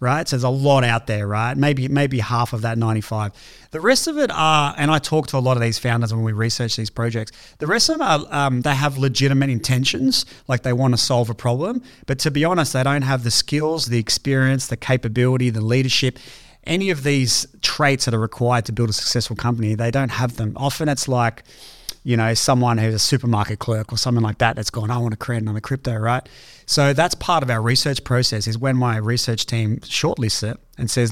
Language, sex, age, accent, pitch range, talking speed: English, male, 30-49, Australian, 115-130 Hz, 230 wpm